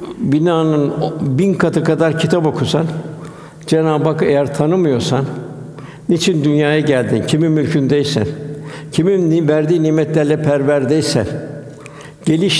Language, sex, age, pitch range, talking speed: Turkish, male, 60-79, 145-160 Hz, 95 wpm